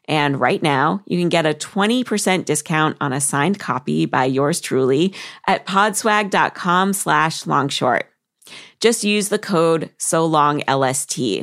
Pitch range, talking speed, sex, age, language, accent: 150-190 Hz, 130 wpm, female, 30-49, English, American